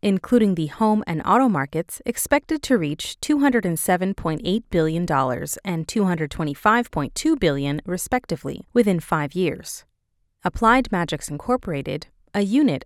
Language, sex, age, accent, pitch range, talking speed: English, female, 30-49, American, 160-230 Hz, 105 wpm